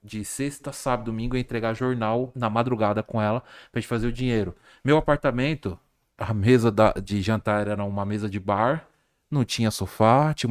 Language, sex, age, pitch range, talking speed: Portuguese, male, 20-39, 105-135 Hz, 185 wpm